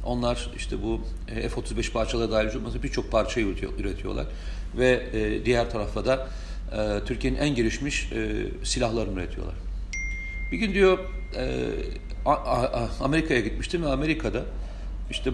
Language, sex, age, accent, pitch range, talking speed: Turkish, male, 40-59, native, 90-135 Hz, 100 wpm